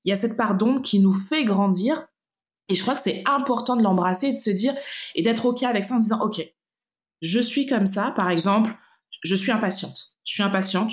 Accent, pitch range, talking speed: French, 190-235 Hz, 230 wpm